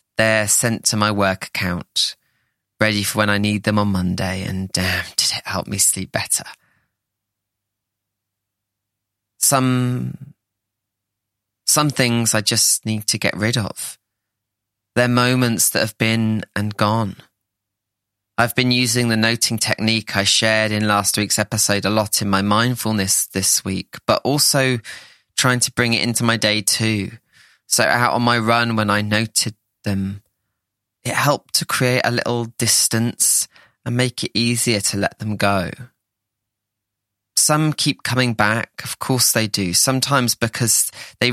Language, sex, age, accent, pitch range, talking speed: English, male, 20-39, British, 100-120 Hz, 150 wpm